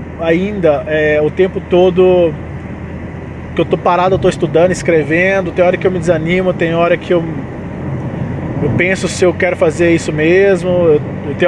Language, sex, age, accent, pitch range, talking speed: Portuguese, male, 20-39, Brazilian, 140-185 Hz, 165 wpm